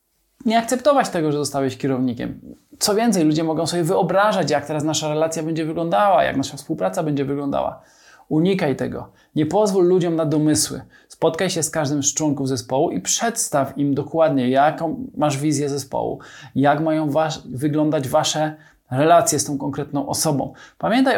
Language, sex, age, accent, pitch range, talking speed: Polish, male, 20-39, native, 140-165 Hz, 155 wpm